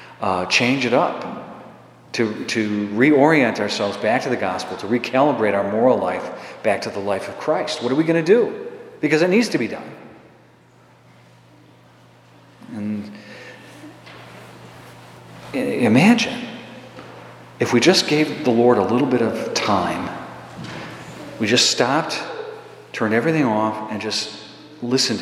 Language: English